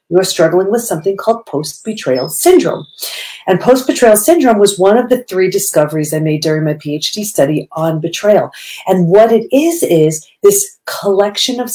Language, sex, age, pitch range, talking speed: English, female, 40-59, 180-250 Hz, 165 wpm